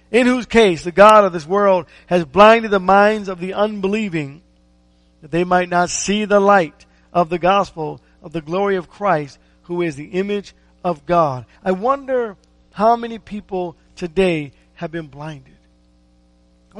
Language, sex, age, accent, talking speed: English, male, 50-69, American, 165 wpm